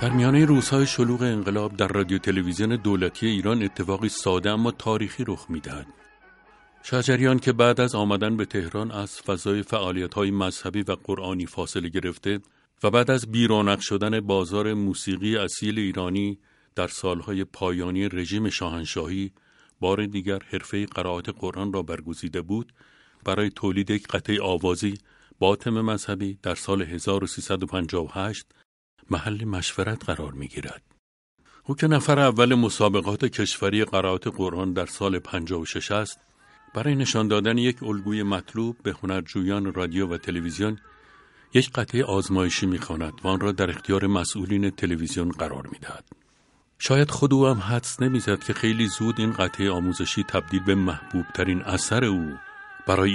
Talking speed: 135 wpm